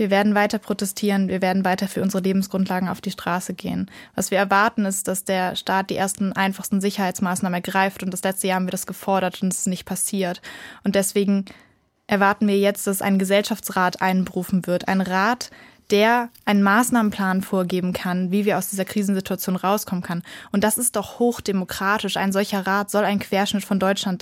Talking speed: 190 wpm